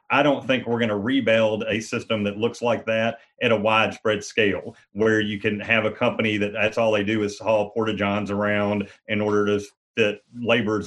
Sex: male